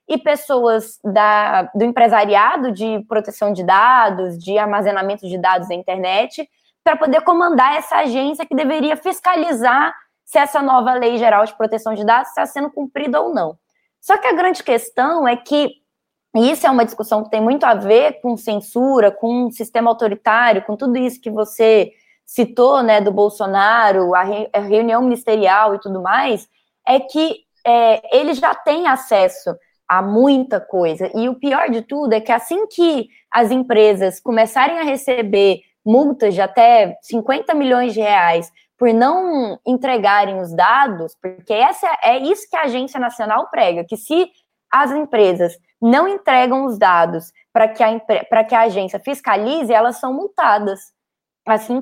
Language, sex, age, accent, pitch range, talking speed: Portuguese, female, 10-29, Brazilian, 210-285 Hz, 155 wpm